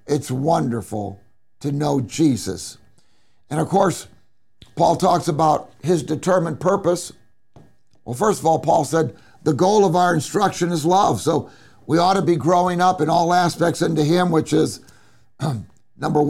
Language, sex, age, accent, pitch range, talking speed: English, male, 60-79, American, 125-170 Hz, 155 wpm